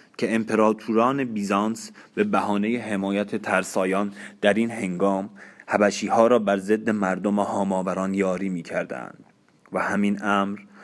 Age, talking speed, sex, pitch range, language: 30-49, 120 wpm, male, 95-110 Hz, Persian